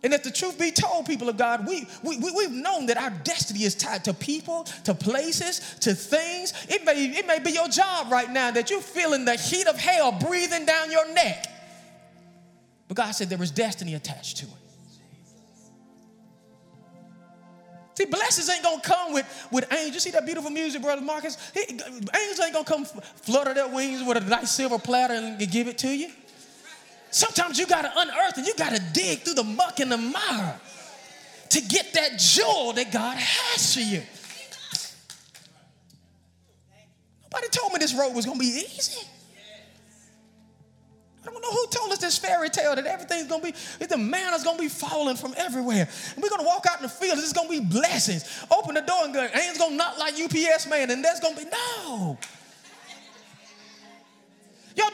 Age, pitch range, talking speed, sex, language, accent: 20-39, 235-340 Hz, 195 wpm, male, English, American